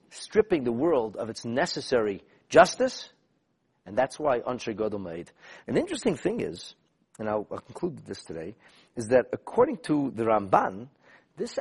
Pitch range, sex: 125-210 Hz, male